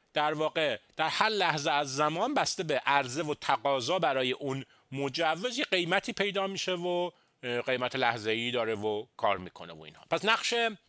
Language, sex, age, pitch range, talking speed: Persian, male, 30-49, 115-185 Hz, 170 wpm